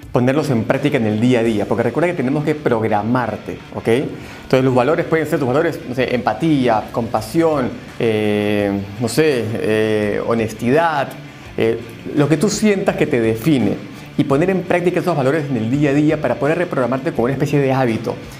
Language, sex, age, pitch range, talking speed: Spanish, male, 30-49, 120-155 Hz, 190 wpm